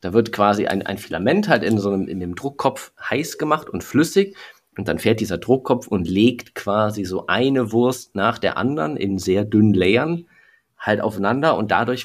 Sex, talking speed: male, 195 wpm